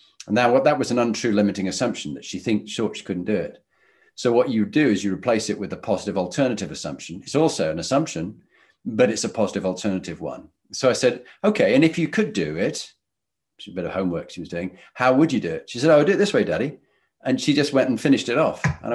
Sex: male